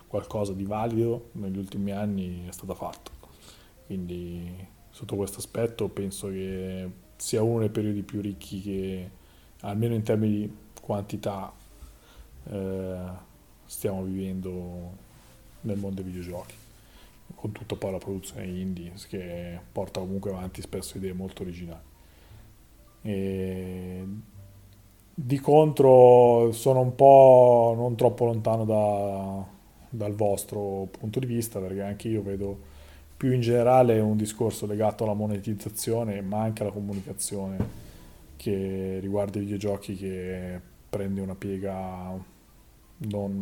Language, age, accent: Italian, 20-39, native